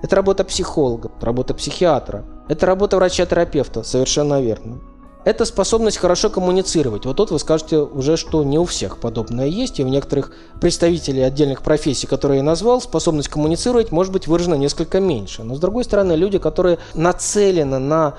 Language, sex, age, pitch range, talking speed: Russian, male, 20-39, 130-175 Hz, 160 wpm